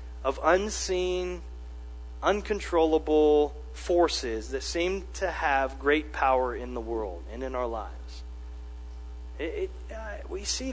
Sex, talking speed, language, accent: male, 125 wpm, English, American